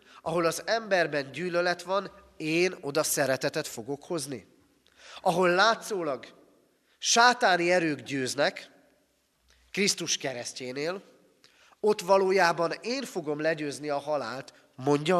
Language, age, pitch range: Hungarian, 30-49, 140-185 Hz